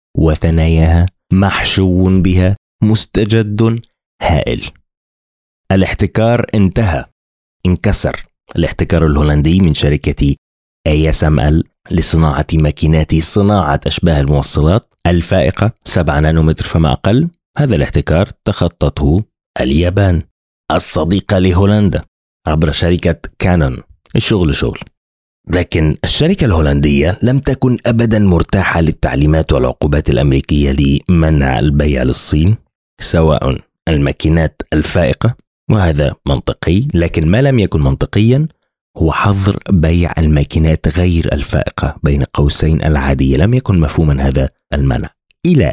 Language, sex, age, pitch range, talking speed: Arabic, male, 30-49, 75-95 Hz, 95 wpm